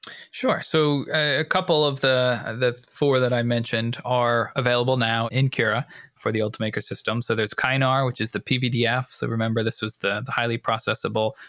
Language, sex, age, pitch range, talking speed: English, male, 20-39, 110-130 Hz, 190 wpm